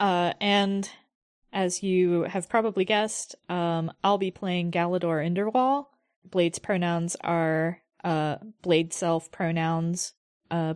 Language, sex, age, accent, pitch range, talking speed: English, female, 20-39, American, 165-195 Hz, 115 wpm